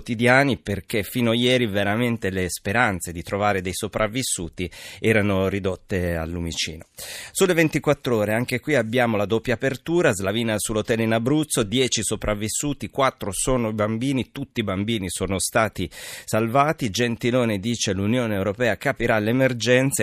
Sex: male